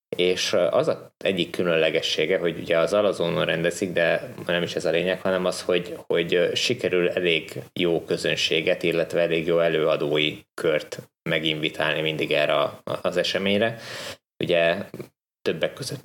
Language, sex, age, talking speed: Hungarian, male, 20-39, 140 wpm